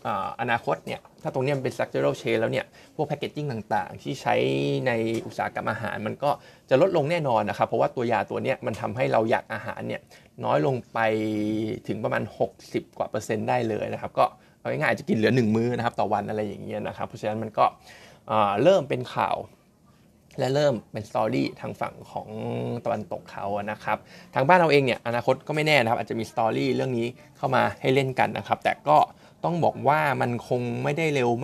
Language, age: Thai, 20-39